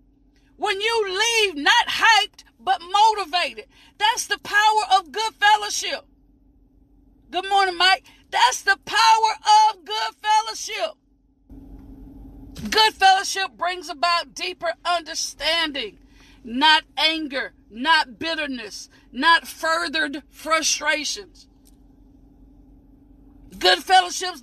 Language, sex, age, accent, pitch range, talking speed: English, female, 40-59, American, 335-415 Hz, 85 wpm